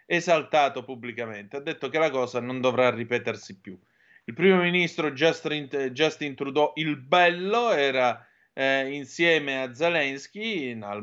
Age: 30-49